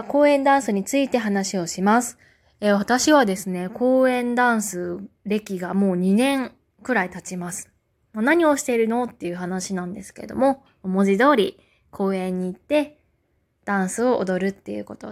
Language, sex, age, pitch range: Japanese, female, 20-39, 185-240 Hz